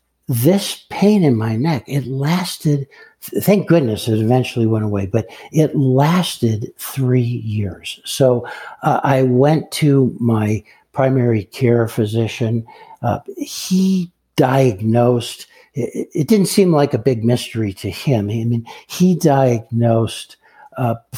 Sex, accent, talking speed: male, American, 130 wpm